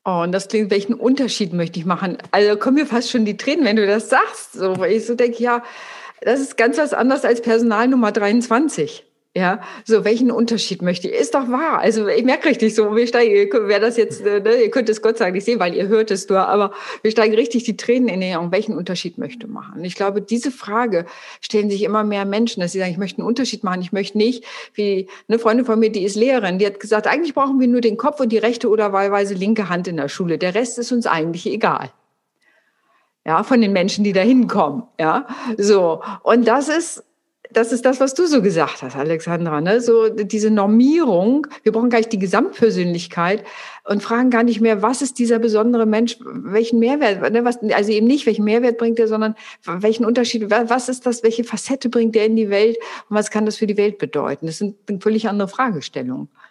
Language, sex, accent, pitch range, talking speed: German, female, German, 200-240 Hz, 220 wpm